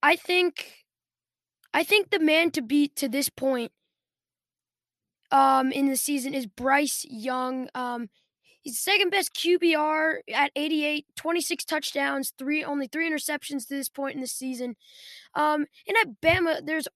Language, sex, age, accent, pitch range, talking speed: English, female, 10-29, American, 255-300 Hz, 155 wpm